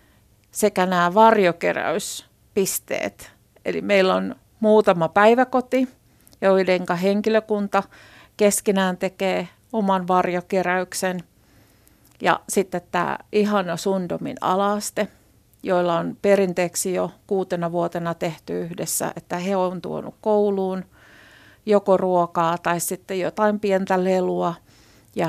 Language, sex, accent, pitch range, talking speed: Finnish, female, native, 175-210 Hz, 95 wpm